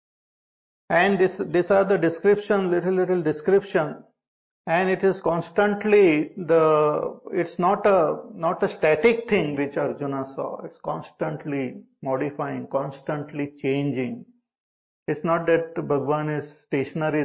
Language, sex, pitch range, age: English, male, 140-185 Hz, 50-69